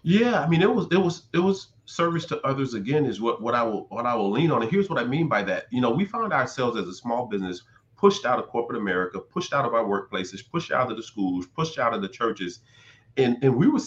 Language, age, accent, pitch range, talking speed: English, 40-59, American, 115-150 Hz, 275 wpm